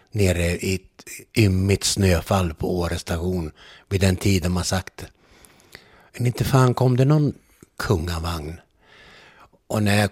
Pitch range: 95-115 Hz